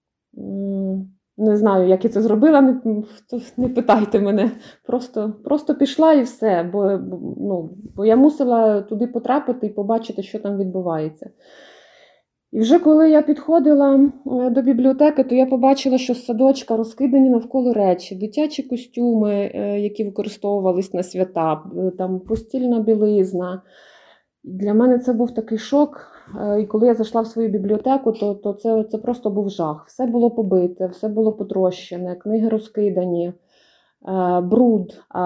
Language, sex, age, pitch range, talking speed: Ukrainian, female, 20-39, 195-245 Hz, 135 wpm